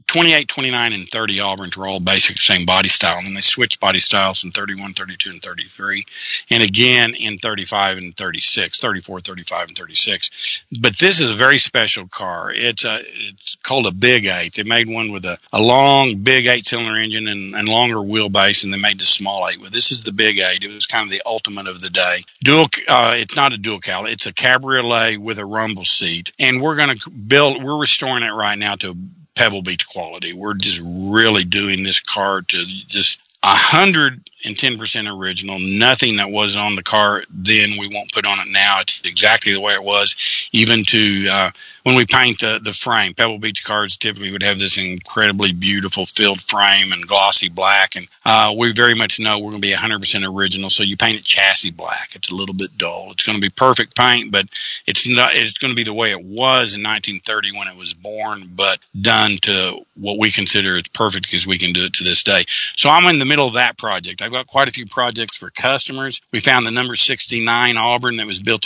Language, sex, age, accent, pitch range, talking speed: English, male, 50-69, American, 95-120 Hz, 220 wpm